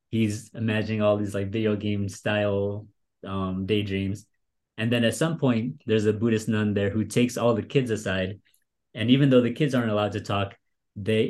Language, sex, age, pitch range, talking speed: English, male, 30-49, 100-120 Hz, 190 wpm